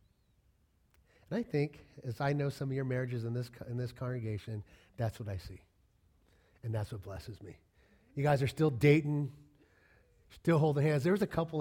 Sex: male